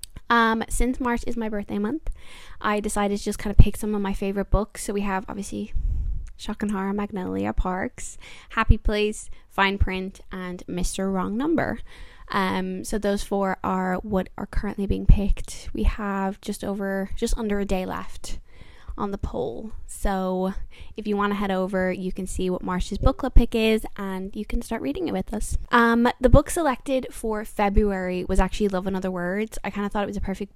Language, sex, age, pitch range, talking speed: English, female, 10-29, 185-215 Hz, 195 wpm